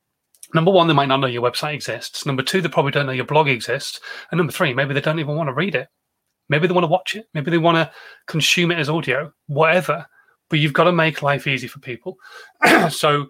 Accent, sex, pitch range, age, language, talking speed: British, male, 135-170 Hz, 30-49, English, 245 wpm